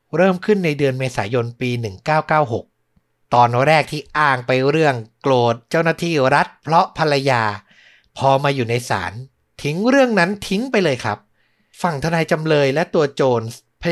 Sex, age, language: male, 60-79, Thai